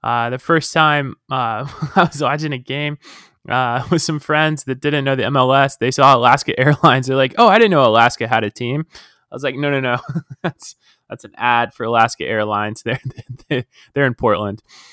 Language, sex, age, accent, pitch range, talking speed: English, male, 20-39, American, 120-160 Hz, 200 wpm